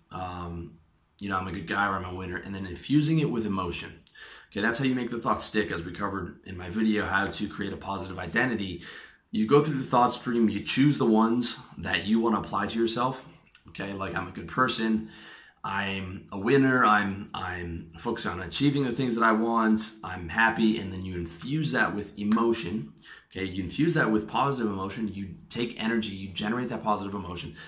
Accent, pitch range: American, 95-115 Hz